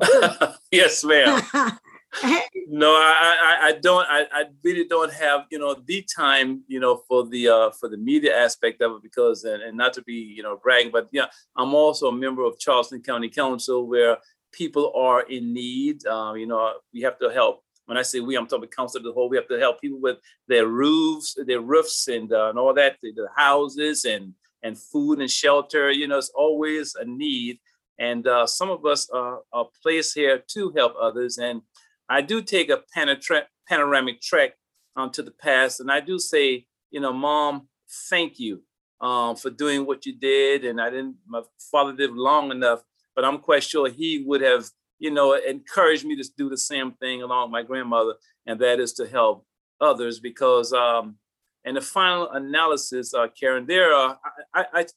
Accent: American